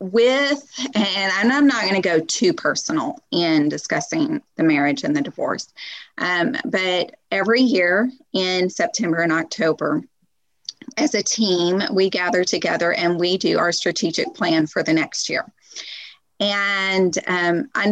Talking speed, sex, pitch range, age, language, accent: 145 wpm, female, 180-255 Hz, 30-49, English, American